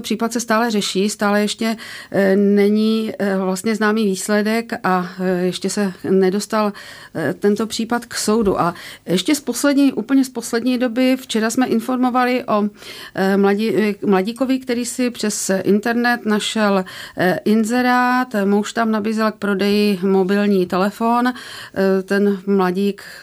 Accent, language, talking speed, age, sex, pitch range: native, Czech, 120 wpm, 50-69, female, 195-235 Hz